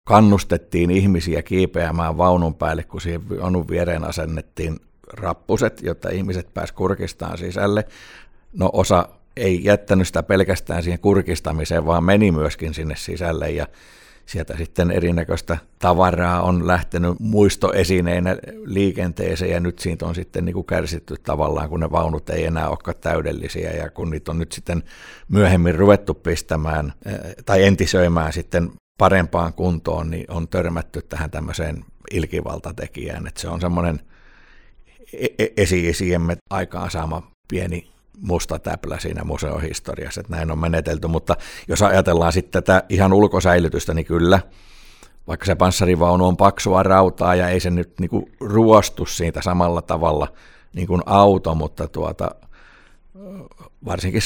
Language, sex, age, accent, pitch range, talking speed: Finnish, male, 60-79, native, 85-95 Hz, 130 wpm